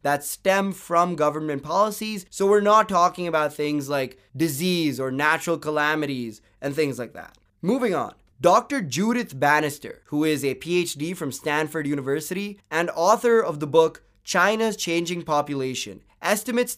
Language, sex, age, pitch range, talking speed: English, male, 20-39, 150-215 Hz, 145 wpm